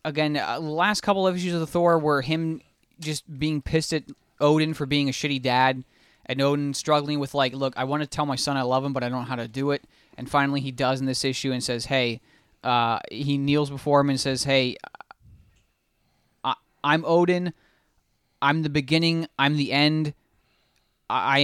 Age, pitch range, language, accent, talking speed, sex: 20-39, 125-150 Hz, English, American, 200 wpm, male